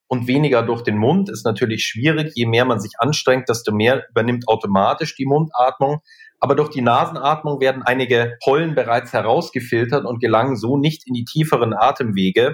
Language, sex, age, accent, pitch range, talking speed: German, male, 40-59, German, 120-145 Hz, 170 wpm